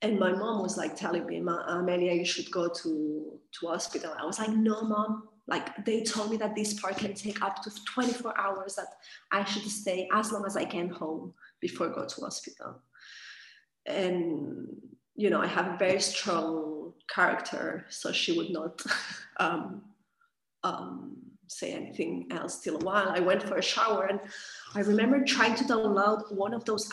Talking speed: 185 wpm